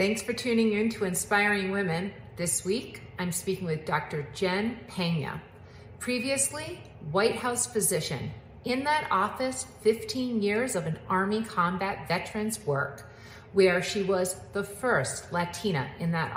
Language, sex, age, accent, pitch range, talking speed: English, female, 50-69, American, 165-220 Hz, 140 wpm